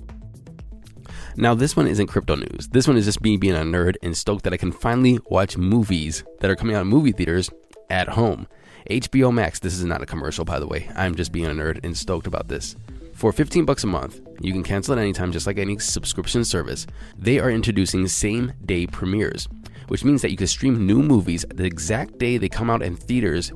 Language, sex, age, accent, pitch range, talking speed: English, male, 20-39, American, 90-115 Hz, 220 wpm